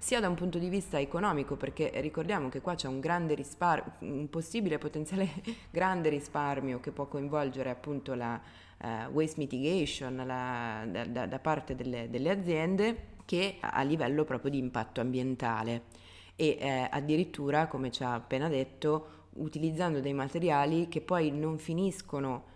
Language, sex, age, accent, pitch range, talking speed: Italian, female, 20-39, native, 130-165 Hz, 145 wpm